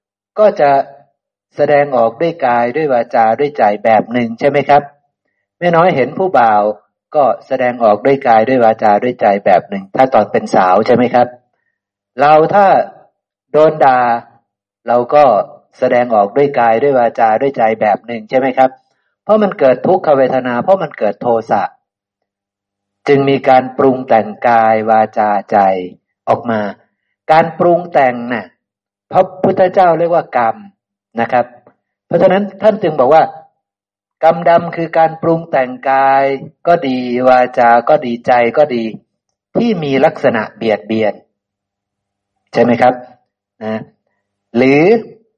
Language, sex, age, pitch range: Thai, male, 60-79, 110-155 Hz